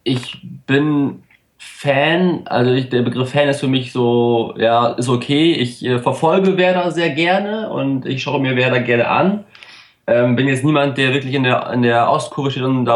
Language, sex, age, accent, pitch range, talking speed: German, male, 20-39, German, 115-135 Hz, 185 wpm